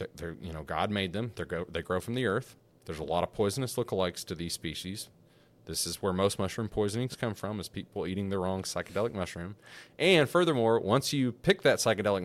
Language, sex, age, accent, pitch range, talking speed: English, male, 30-49, American, 90-125 Hz, 210 wpm